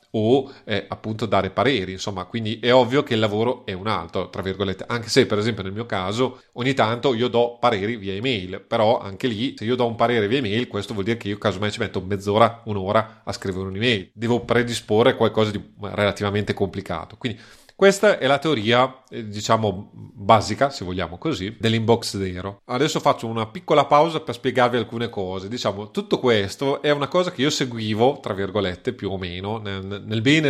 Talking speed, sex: 190 wpm, male